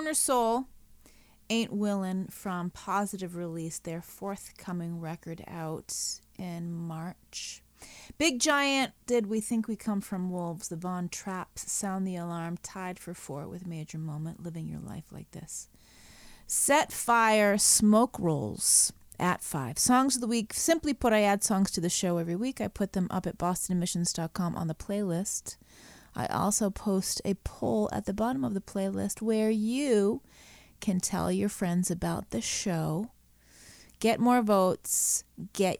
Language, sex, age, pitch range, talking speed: English, female, 30-49, 175-220 Hz, 155 wpm